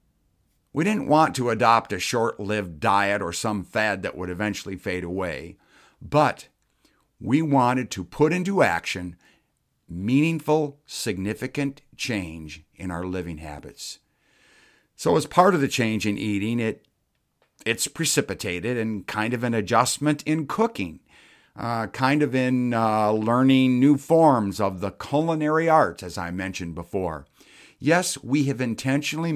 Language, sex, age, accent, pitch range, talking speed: English, male, 50-69, American, 100-140 Hz, 135 wpm